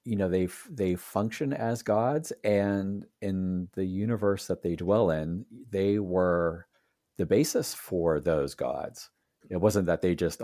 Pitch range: 80-95 Hz